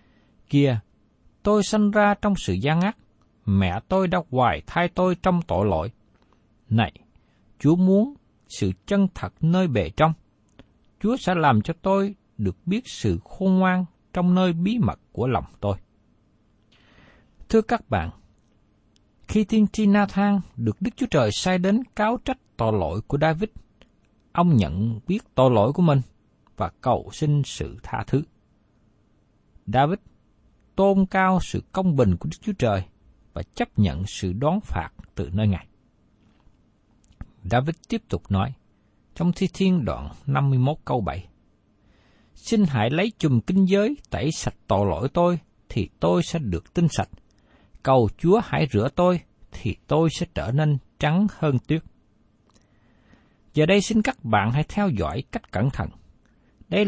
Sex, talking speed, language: male, 155 wpm, Vietnamese